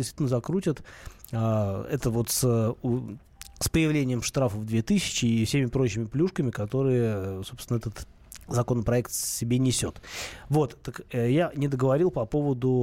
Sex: male